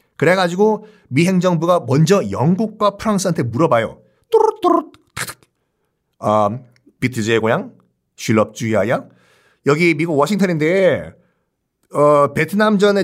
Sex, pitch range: male, 140-225 Hz